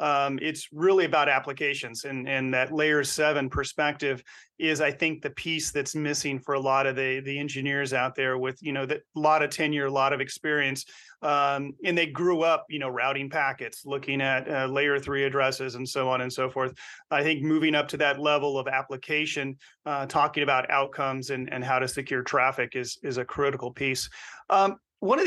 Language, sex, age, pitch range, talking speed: English, male, 30-49, 135-155 Hz, 200 wpm